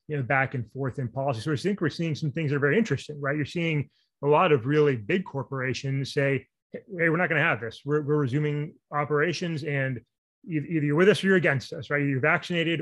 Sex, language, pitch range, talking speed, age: male, English, 135-150 Hz, 240 wpm, 30-49